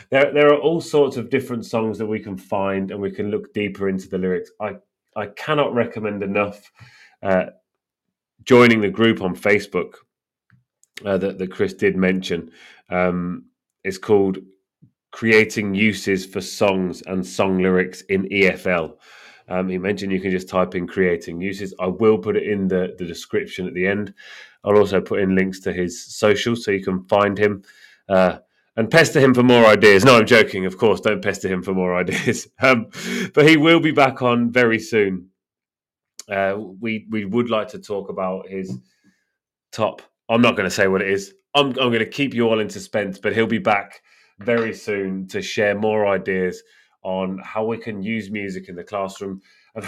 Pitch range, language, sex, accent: 95-120 Hz, English, male, British